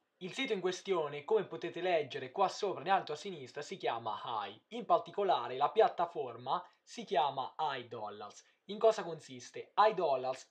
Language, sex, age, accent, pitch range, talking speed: Italian, male, 20-39, native, 155-215 Hz, 155 wpm